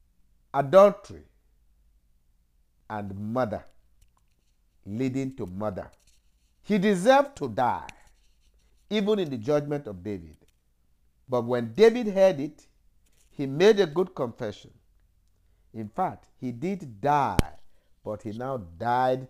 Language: English